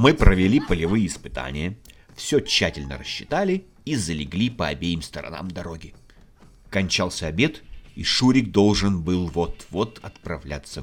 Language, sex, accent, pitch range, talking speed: Russian, male, native, 75-110 Hz, 115 wpm